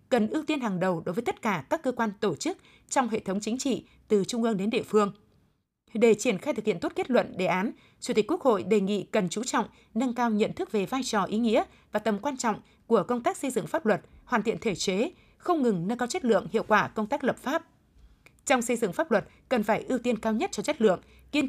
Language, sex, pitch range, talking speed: Vietnamese, female, 200-255 Hz, 265 wpm